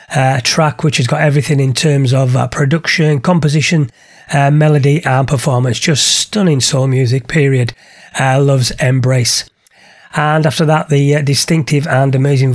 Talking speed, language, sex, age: 155 wpm, English, male, 30-49